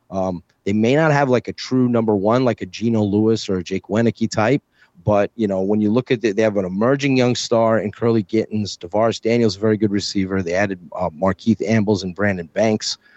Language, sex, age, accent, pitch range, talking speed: English, male, 30-49, American, 105-130 Hz, 230 wpm